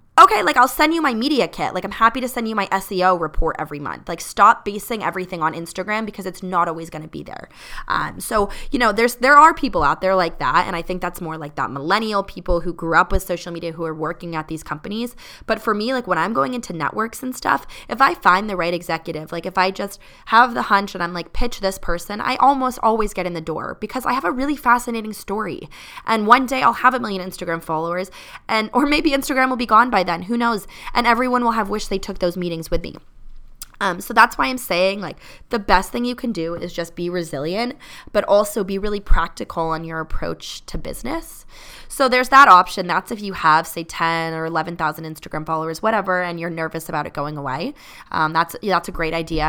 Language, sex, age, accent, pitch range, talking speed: English, female, 20-39, American, 165-230 Hz, 240 wpm